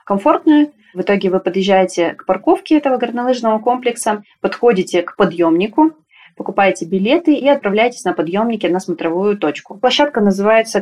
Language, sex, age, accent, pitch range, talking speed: Russian, female, 20-39, native, 185-235 Hz, 135 wpm